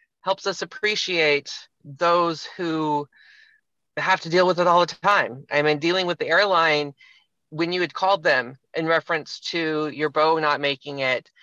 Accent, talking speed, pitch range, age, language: American, 170 wpm, 145-175 Hz, 30-49, English